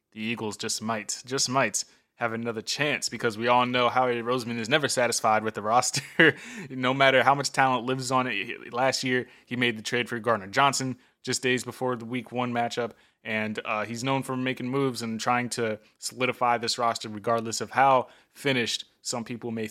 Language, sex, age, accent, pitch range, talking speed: English, male, 20-39, American, 115-135 Hz, 200 wpm